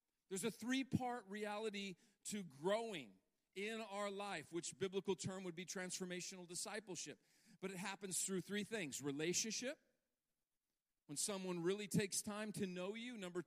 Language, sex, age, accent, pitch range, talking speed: English, male, 40-59, American, 175-215 Hz, 145 wpm